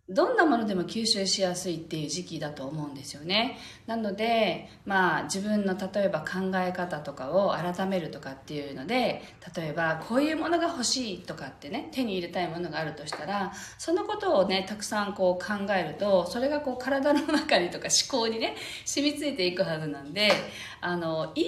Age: 40-59